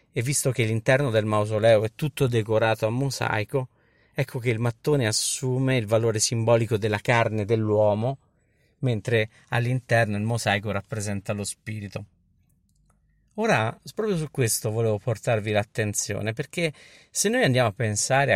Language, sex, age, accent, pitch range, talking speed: Italian, male, 50-69, native, 110-140 Hz, 135 wpm